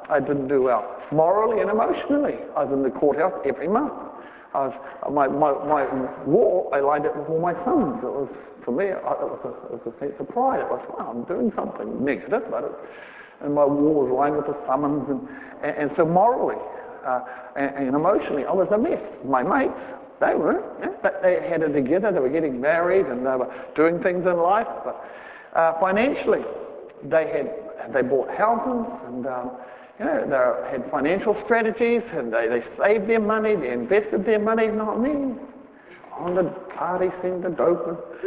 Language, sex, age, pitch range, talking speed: English, male, 50-69, 150-215 Hz, 200 wpm